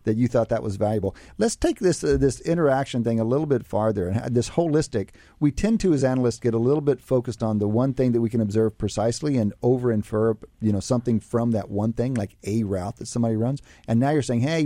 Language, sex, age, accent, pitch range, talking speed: English, male, 40-59, American, 105-135 Hz, 245 wpm